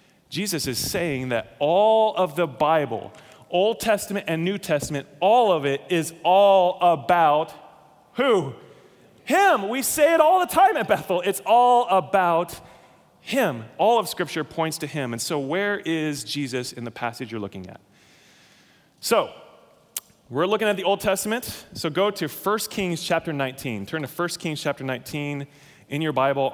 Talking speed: 165 wpm